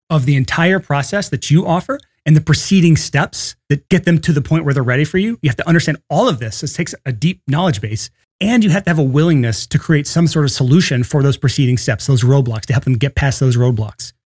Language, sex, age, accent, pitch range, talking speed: English, male, 30-49, American, 130-170 Hz, 255 wpm